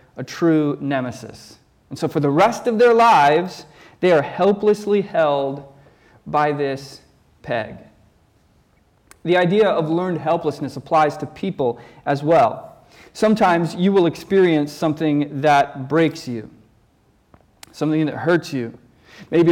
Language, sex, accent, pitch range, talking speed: English, male, American, 140-175 Hz, 125 wpm